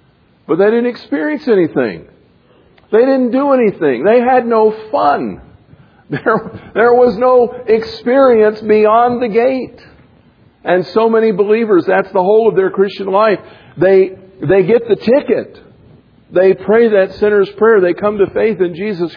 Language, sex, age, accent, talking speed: English, male, 50-69, American, 150 wpm